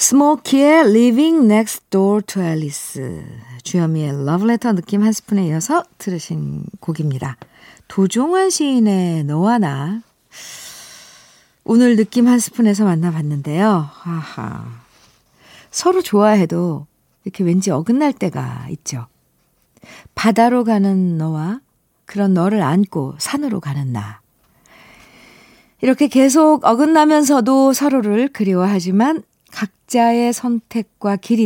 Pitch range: 165-240 Hz